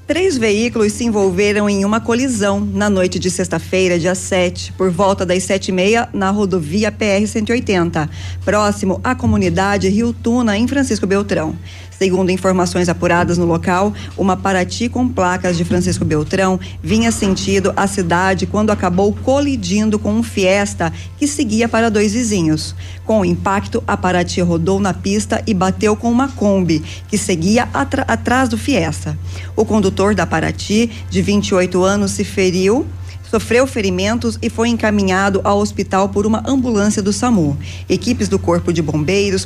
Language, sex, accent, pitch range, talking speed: Portuguese, female, Brazilian, 170-210 Hz, 150 wpm